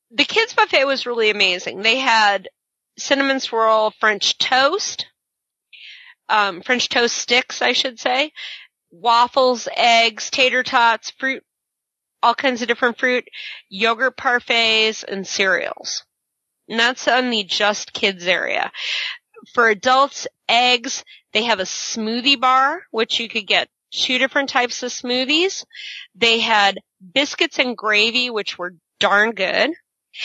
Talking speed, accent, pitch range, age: 130 wpm, American, 215-265 Hz, 30-49